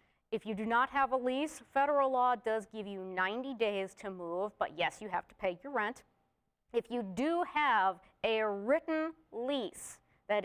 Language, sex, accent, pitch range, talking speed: English, female, American, 200-250 Hz, 185 wpm